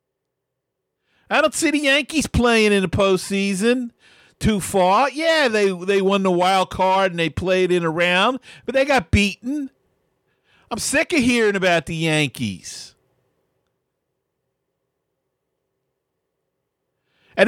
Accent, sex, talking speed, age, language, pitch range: American, male, 125 wpm, 50-69, English, 160-255 Hz